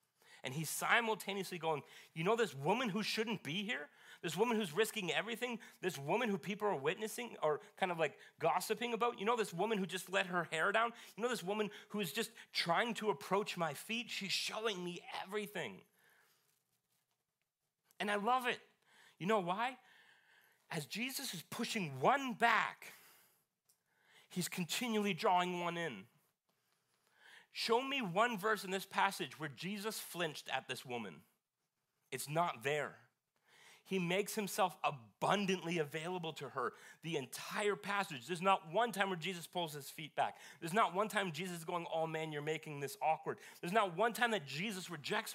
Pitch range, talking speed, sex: 165-220 Hz, 170 wpm, male